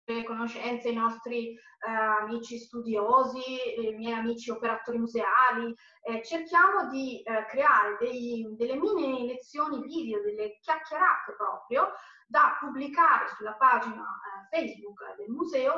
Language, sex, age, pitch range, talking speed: Italian, female, 30-49, 225-285 Hz, 125 wpm